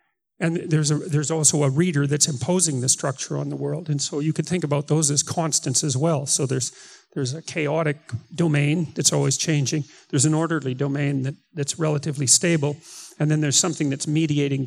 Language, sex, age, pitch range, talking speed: English, male, 40-59, 140-160 Hz, 195 wpm